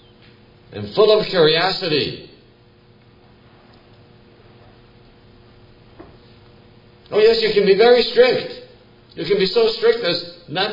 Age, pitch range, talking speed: 60-79, 120-155 Hz, 100 wpm